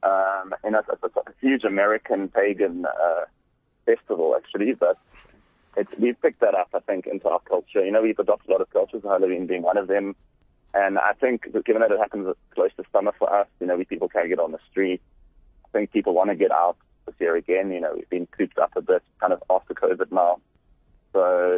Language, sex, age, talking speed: English, male, 30-49, 230 wpm